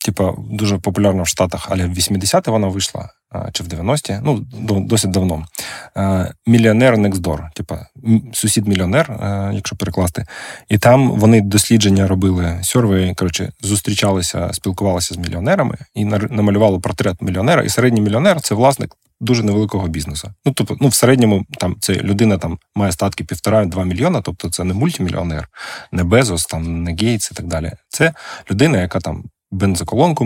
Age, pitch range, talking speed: 20-39, 95-115 Hz, 155 wpm